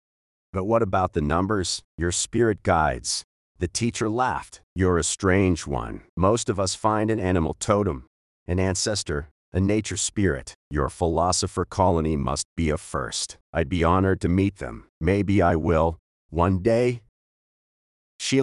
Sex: male